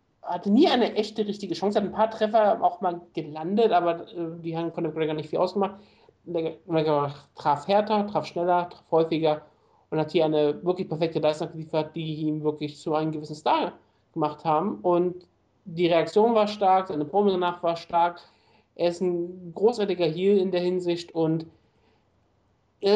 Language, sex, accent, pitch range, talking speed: German, male, German, 155-180 Hz, 170 wpm